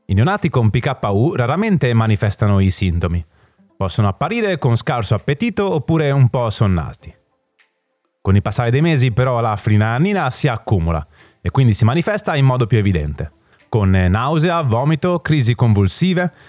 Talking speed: 145 wpm